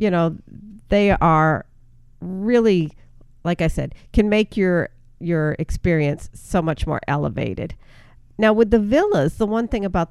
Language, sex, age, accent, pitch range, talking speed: English, female, 50-69, American, 150-185 Hz, 150 wpm